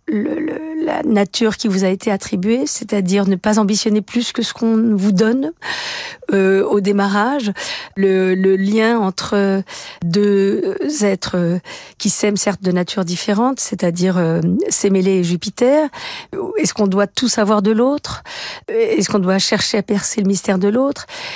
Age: 50-69